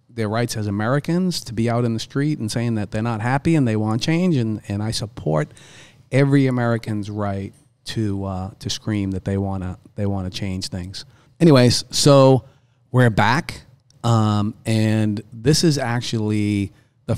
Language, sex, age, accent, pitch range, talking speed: English, male, 40-59, American, 100-125 Hz, 175 wpm